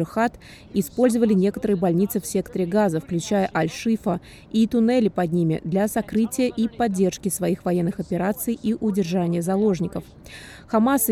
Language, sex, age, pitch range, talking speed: Russian, female, 20-39, 180-220 Hz, 125 wpm